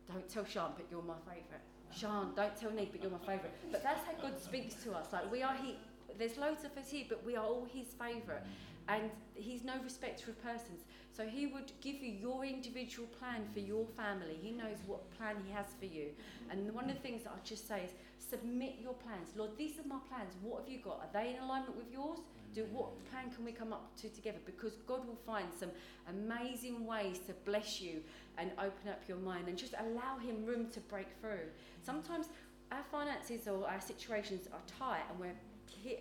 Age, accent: 30-49, British